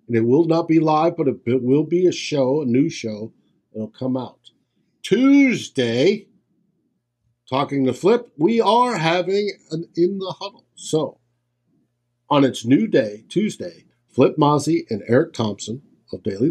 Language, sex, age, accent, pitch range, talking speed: English, male, 50-69, American, 120-165 Hz, 155 wpm